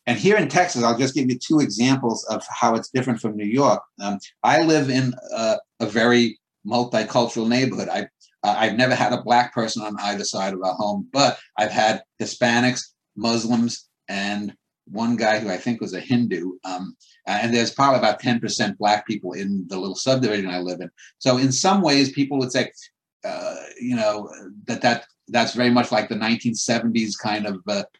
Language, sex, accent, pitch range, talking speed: English, male, American, 115-150 Hz, 190 wpm